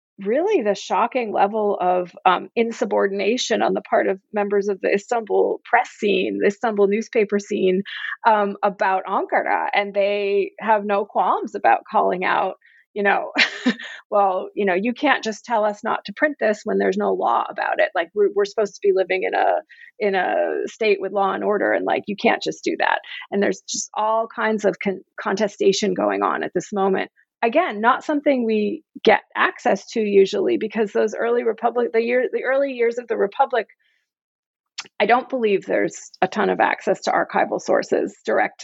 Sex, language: female, English